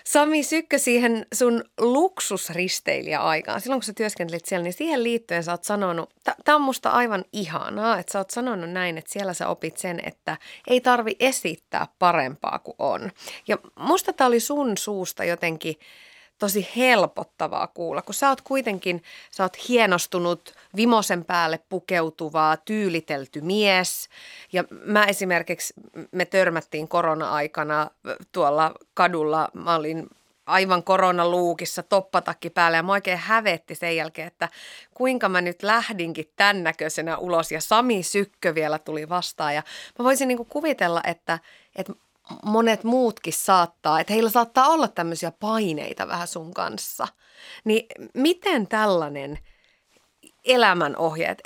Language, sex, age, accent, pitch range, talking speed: Finnish, female, 20-39, native, 170-230 Hz, 140 wpm